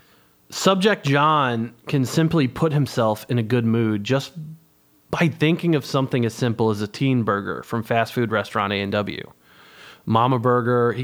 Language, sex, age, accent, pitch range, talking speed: English, male, 30-49, American, 115-145 Hz, 160 wpm